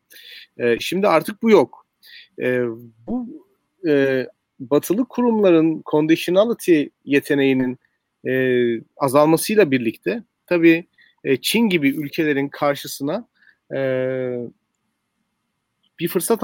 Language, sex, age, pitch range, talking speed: Turkish, male, 40-59, 135-190 Hz, 65 wpm